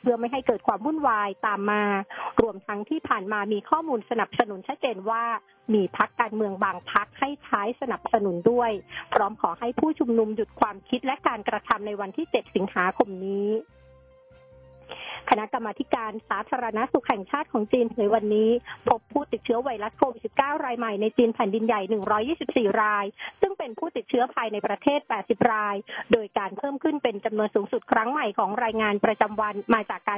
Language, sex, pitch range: Thai, female, 210-255 Hz